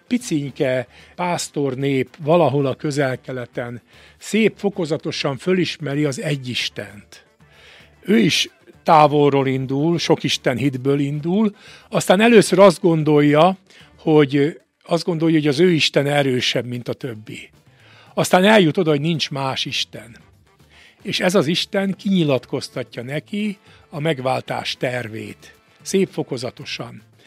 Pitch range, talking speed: 135-175 Hz, 115 wpm